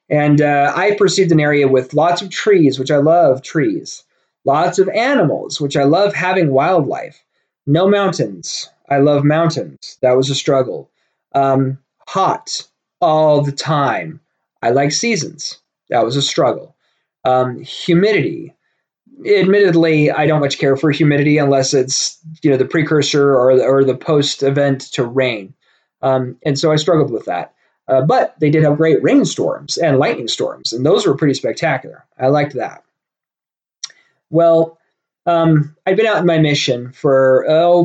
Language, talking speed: English, 160 wpm